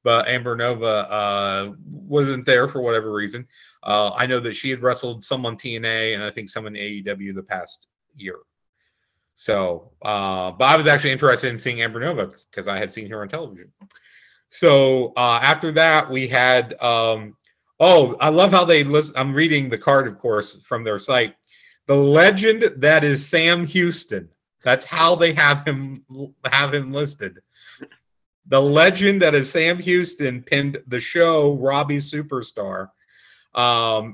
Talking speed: 165 wpm